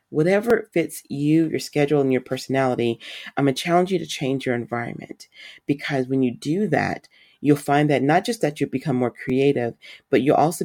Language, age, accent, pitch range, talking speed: English, 40-59, American, 120-145 Hz, 195 wpm